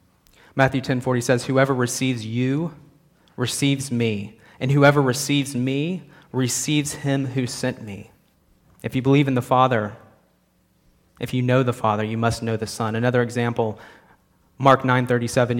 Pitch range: 110-135 Hz